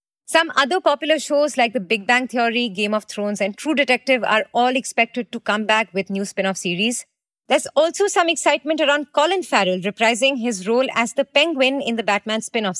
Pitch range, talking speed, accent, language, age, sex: 220-295 Hz, 195 wpm, Indian, English, 30-49, female